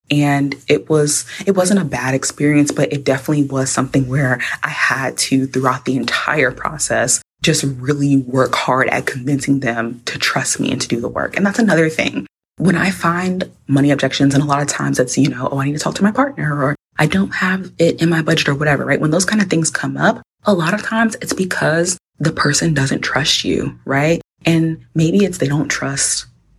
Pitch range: 135-185 Hz